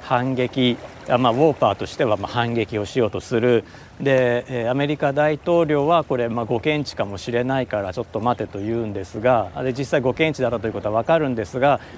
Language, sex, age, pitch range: Japanese, male, 40-59, 110-160 Hz